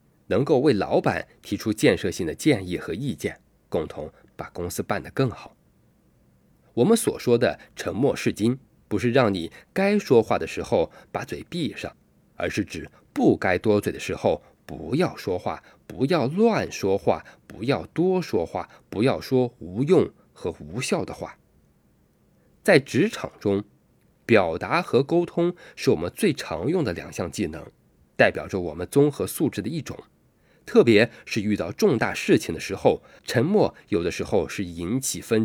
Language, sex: Chinese, male